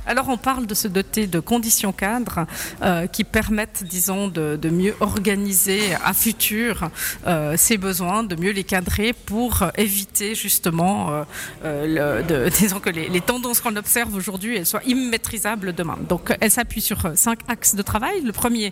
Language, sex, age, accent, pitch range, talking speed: French, female, 40-59, French, 185-230 Hz, 175 wpm